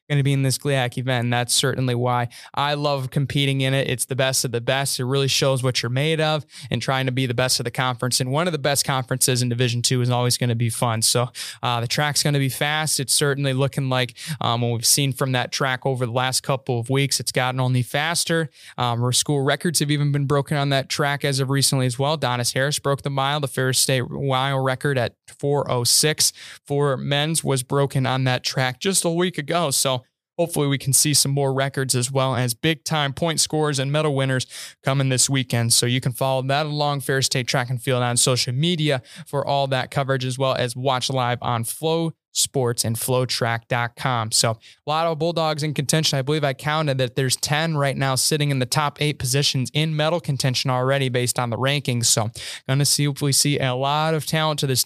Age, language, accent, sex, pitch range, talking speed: 20-39, English, American, male, 125-145 Hz, 230 wpm